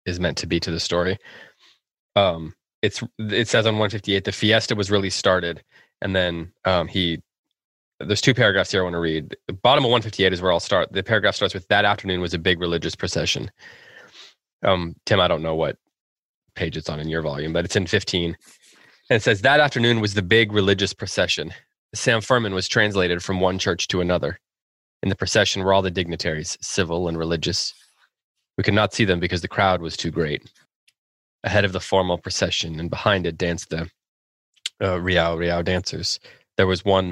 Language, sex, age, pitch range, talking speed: English, male, 20-39, 85-100 Hz, 195 wpm